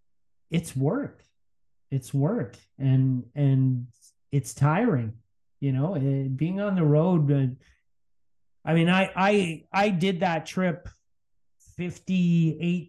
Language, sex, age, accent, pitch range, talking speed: English, male, 30-49, American, 135-165 Hz, 110 wpm